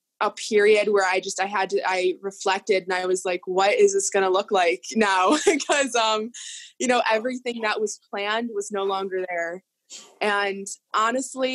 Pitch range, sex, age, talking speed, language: 190-220 Hz, female, 20-39, 185 wpm, English